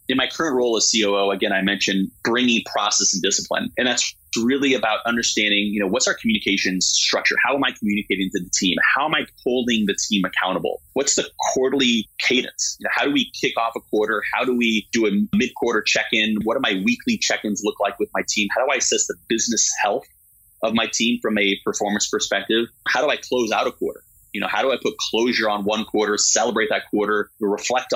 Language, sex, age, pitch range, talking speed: English, male, 30-49, 100-125 Hz, 220 wpm